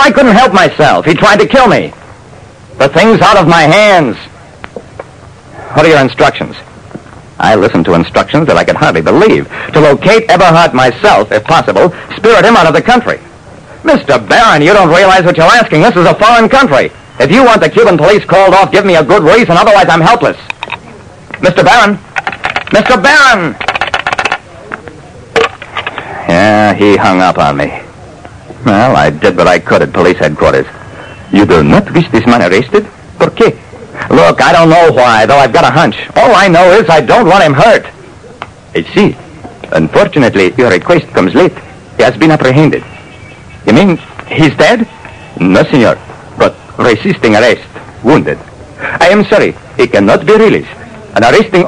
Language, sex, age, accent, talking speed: English, male, 60-79, American, 170 wpm